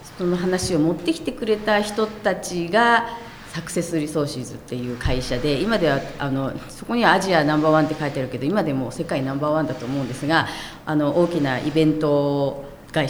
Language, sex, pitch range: Japanese, female, 150-215 Hz